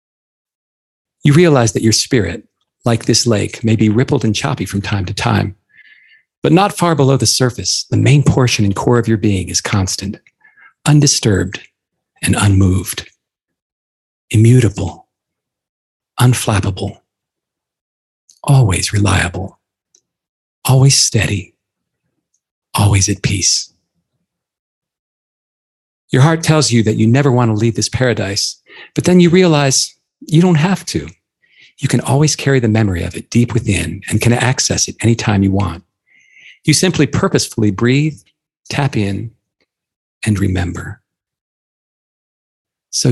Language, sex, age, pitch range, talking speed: English, male, 40-59, 100-130 Hz, 125 wpm